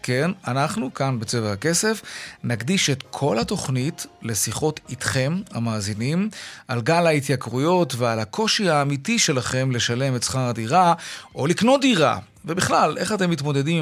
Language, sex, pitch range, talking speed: Hebrew, male, 125-170 Hz, 130 wpm